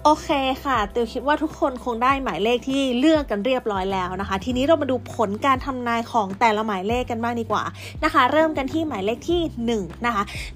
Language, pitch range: Thai, 225-310 Hz